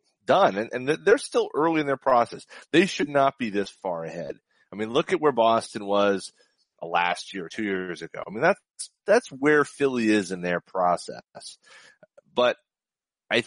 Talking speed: 180 wpm